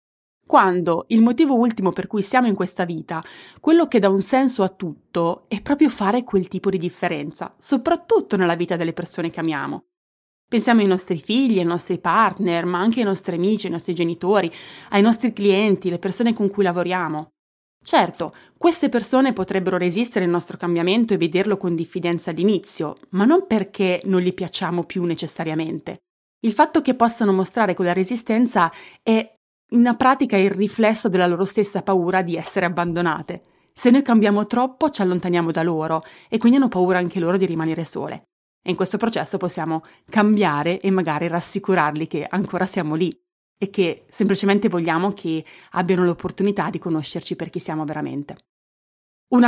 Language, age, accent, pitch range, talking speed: Italian, 30-49, native, 175-225 Hz, 170 wpm